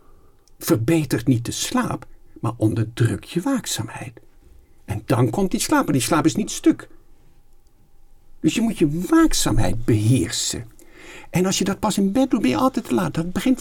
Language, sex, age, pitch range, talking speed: Dutch, male, 60-79, 125-185 Hz, 175 wpm